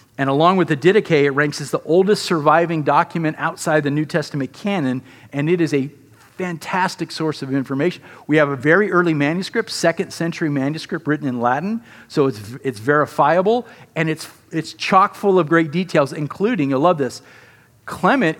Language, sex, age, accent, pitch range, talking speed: English, male, 50-69, American, 140-180 Hz, 175 wpm